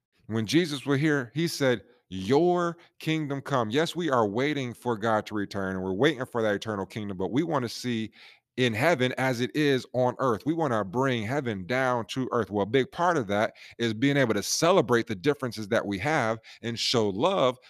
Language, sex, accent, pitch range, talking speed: English, male, American, 110-140 Hz, 215 wpm